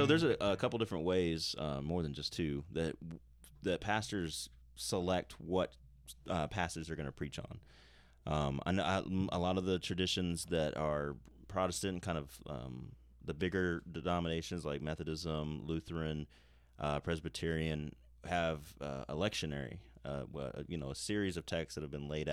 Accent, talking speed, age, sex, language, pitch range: American, 160 wpm, 30-49, male, English, 70-90 Hz